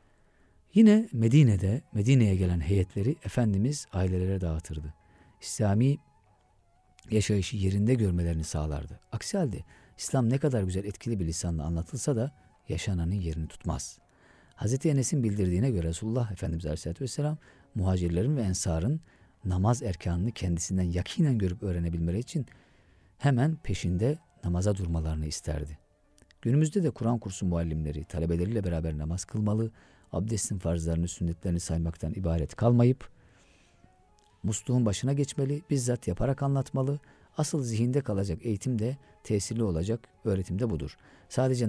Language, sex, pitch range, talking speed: Turkish, male, 85-125 Hz, 115 wpm